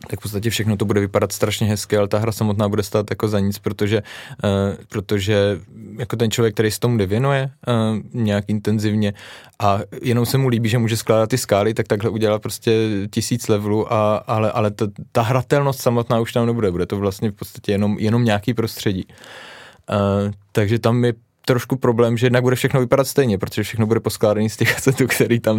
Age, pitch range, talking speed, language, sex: 20-39, 105-120 Hz, 195 wpm, Czech, male